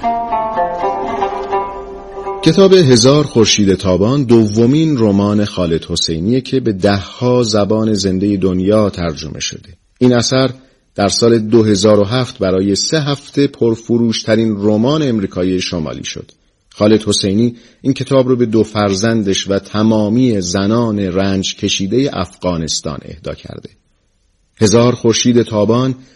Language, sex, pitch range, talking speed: Persian, male, 100-125 Hz, 115 wpm